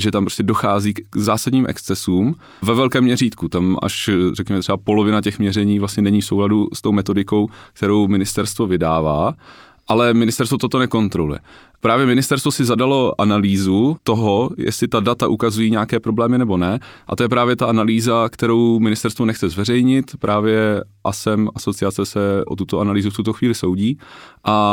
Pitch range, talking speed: 100-125 Hz, 160 wpm